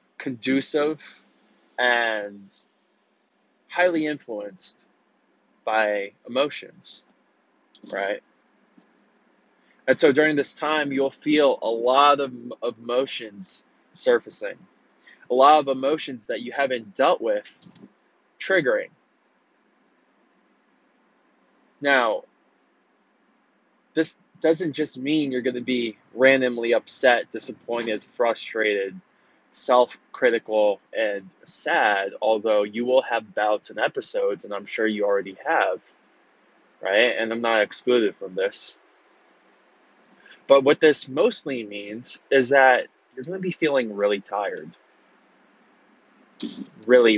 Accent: American